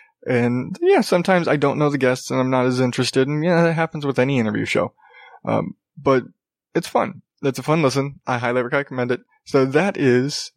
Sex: male